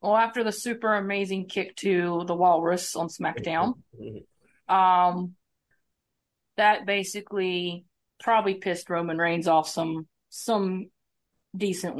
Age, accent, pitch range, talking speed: 30-49, American, 175-215 Hz, 110 wpm